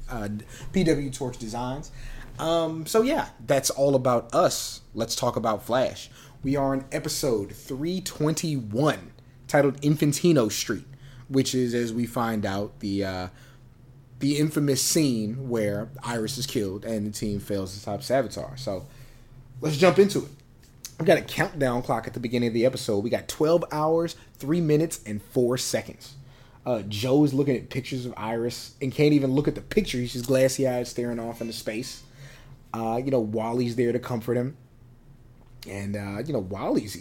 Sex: male